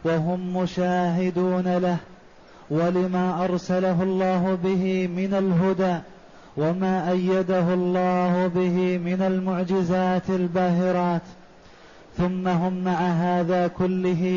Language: Arabic